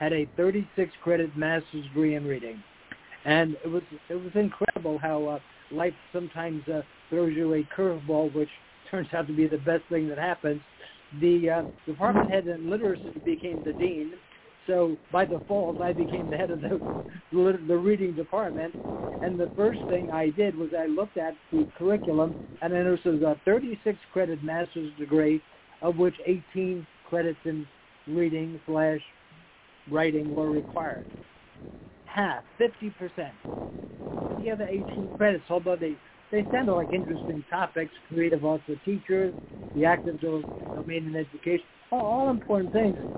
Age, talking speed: 60-79, 145 wpm